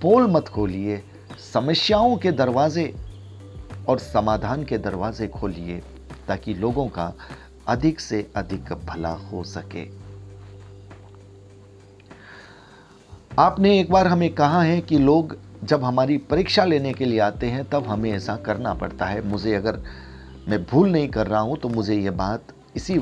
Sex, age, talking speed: male, 40-59, 145 wpm